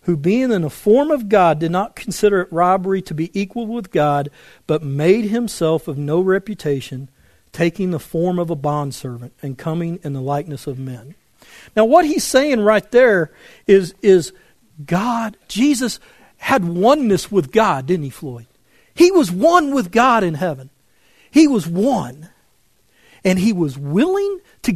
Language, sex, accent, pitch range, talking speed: English, male, American, 155-240 Hz, 165 wpm